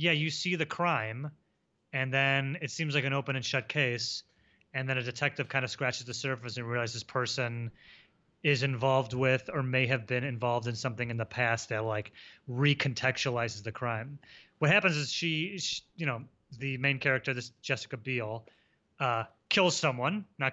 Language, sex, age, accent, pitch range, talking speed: English, male, 30-49, American, 120-150 Hz, 185 wpm